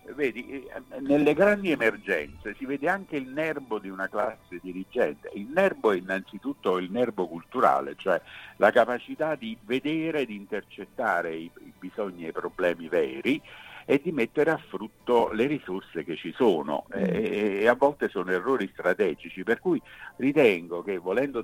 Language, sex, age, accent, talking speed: Italian, male, 50-69, native, 155 wpm